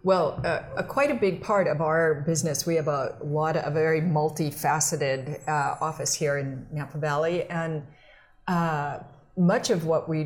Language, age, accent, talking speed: English, 50-69, American, 175 wpm